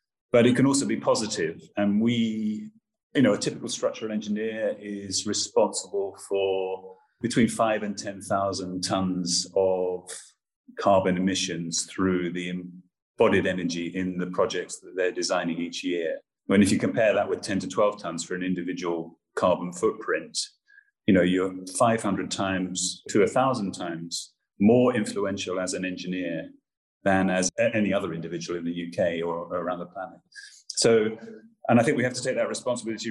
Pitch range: 90-135 Hz